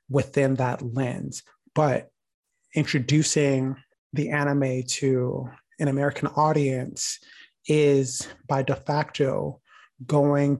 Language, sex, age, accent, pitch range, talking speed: English, male, 30-49, American, 135-150 Hz, 90 wpm